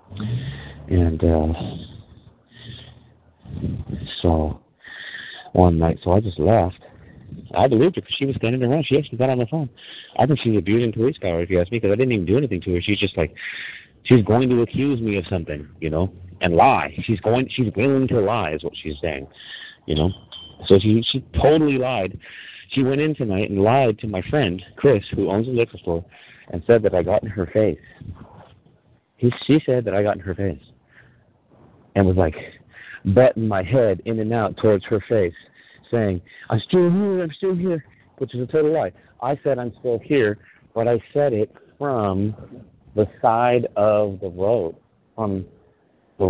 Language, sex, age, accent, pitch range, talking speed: English, male, 50-69, American, 95-125 Hz, 185 wpm